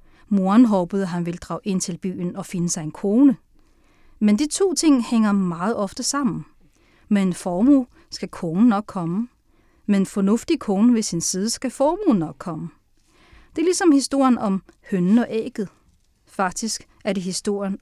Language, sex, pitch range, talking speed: Danish, female, 185-240 Hz, 175 wpm